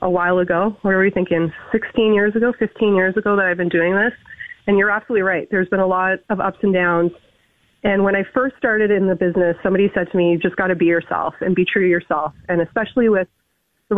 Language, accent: English, American